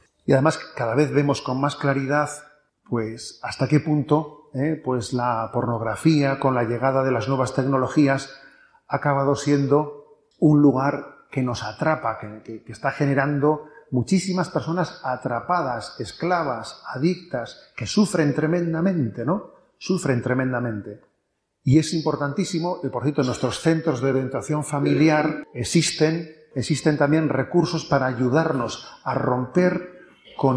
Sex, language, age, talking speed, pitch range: male, Spanish, 40-59, 130 wpm, 130-165 Hz